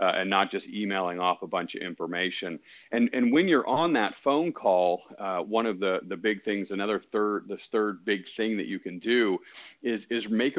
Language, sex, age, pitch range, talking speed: English, male, 40-59, 95-110 Hz, 215 wpm